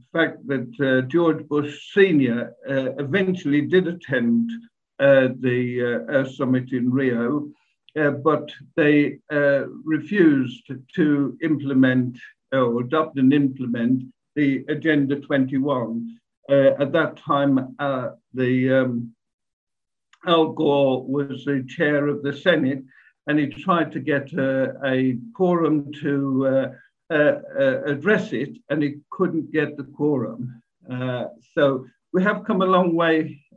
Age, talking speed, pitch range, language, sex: 60-79, 130 wpm, 130-155 Hz, English, male